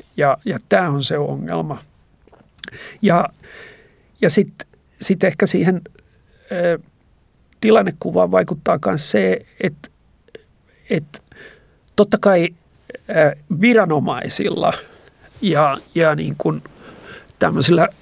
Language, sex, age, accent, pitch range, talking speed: Finnish, male, 60-79, native, 145-180 Hz, 90 wpm